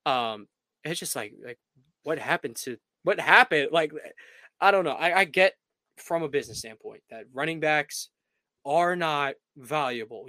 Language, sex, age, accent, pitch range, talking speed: English, male, 20-39, American, 130-185 Hz, 155 wpm